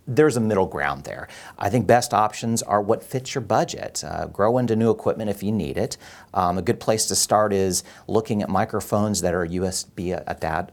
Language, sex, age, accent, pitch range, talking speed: English, male, 40-59, American, 90-110 Hz, 205 wpm